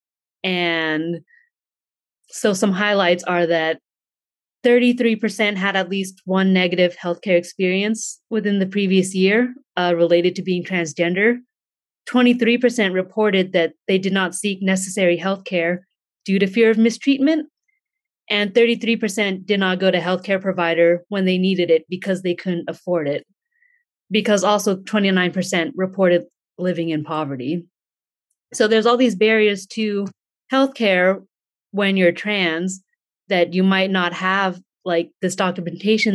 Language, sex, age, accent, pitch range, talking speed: English, female, 30-49, American, 180-220 Hz, 140 wpm